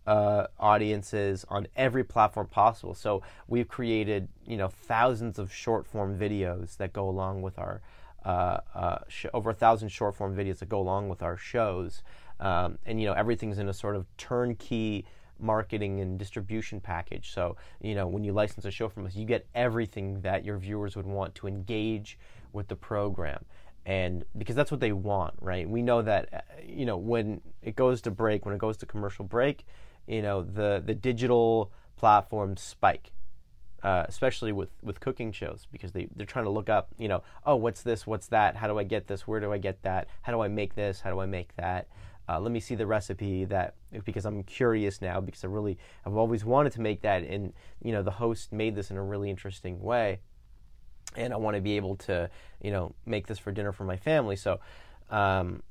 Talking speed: 210 wpm